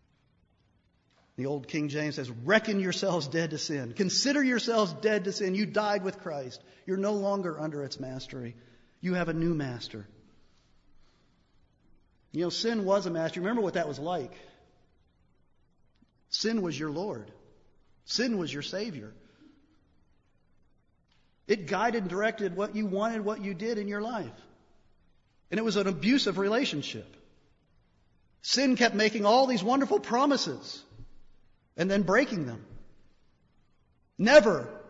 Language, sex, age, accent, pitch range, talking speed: English, male, 50-69, American, 140-205 Hz, 140 wpm